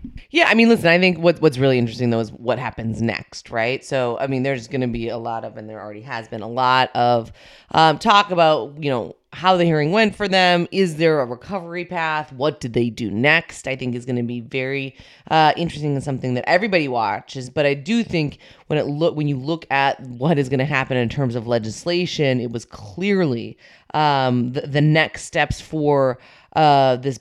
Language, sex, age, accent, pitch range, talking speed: English, female, 30-49, American, 125-175 Hz, 220 wpm